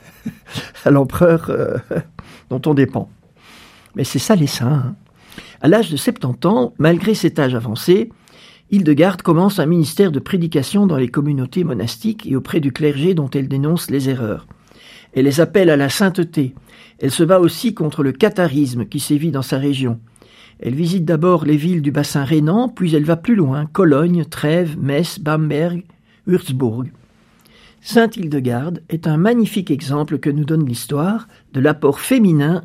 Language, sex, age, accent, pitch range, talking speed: French, male, 60-79, French, 140-190 Hz, 165 wpm